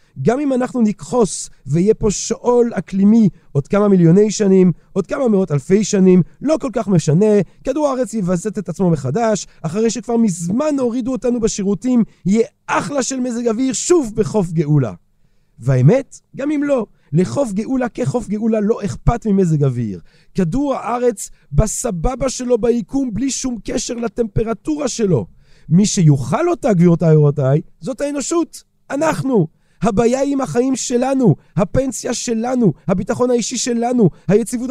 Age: 40-59